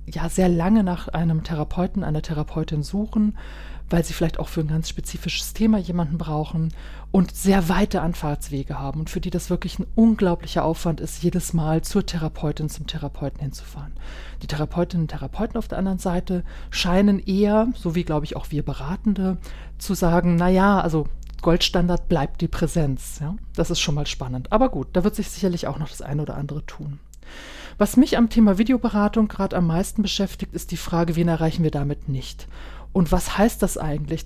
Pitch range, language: 155-195 Hz, German